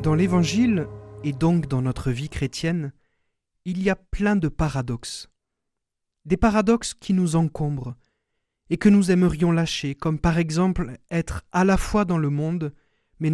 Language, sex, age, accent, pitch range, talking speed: French, male, 40-59, French, 140-185 Hz, 155 wpm